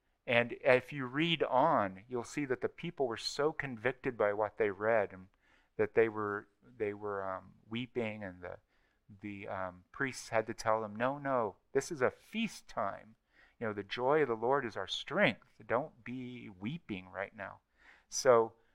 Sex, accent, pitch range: male, American, 110-145 Hz